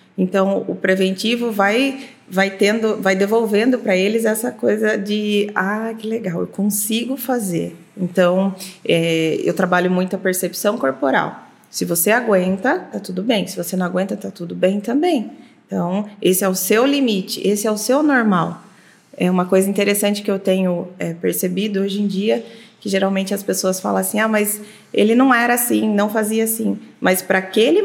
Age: 20-39